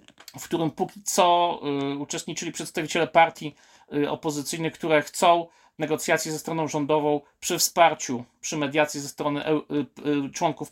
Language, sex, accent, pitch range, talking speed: Polish, male, native, 135-165 Hz, 120 wpm